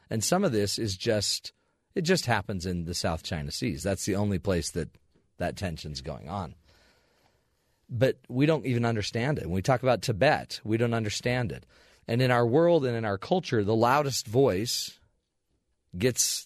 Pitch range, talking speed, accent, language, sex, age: 95-130 Hz, 180 wpm, American, English, male, 40-59